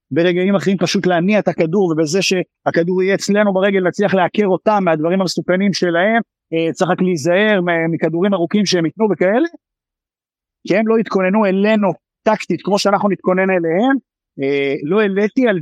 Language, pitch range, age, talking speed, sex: Hebrew, 150-190 Hz, 50-69, 140 wpm, male